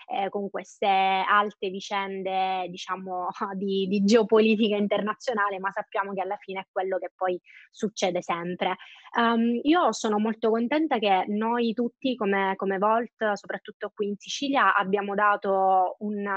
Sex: female